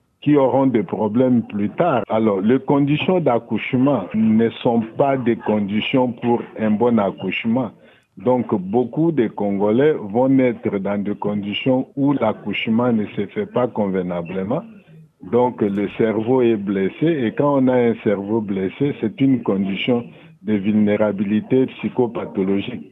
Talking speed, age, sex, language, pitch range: 140 wpm, 50-69, male, French, 105-140 Hz